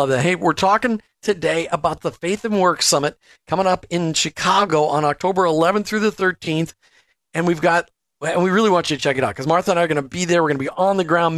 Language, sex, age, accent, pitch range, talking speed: English, male, 50-69, American, 155-190 Hz, 255 wpm